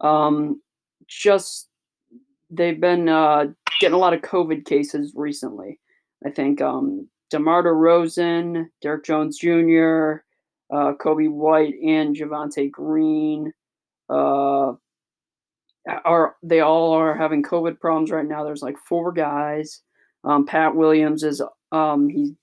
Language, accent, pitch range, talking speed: English, American, 145-170 Hz, 125 wpm